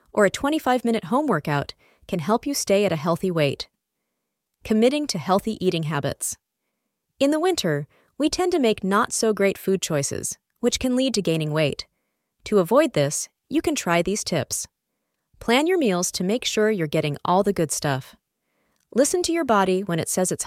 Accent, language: American, English